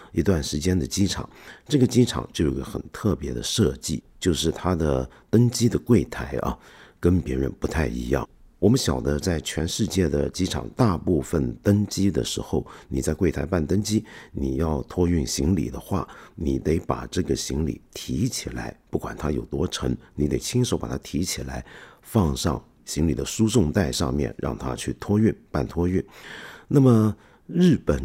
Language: Chinese